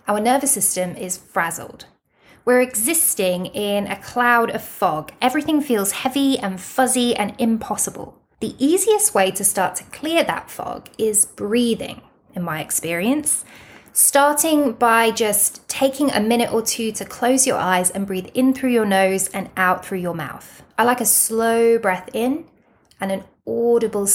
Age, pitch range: 20-39, 190-240 Hz